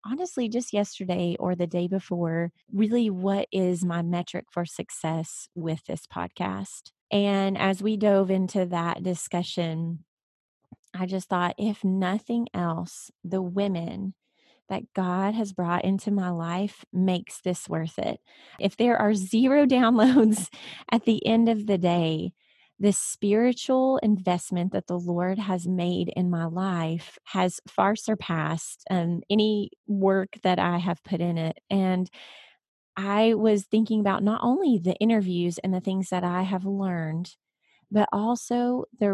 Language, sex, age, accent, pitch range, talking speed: English, female, 30-49, American, 175-215 Hz, 145 wpm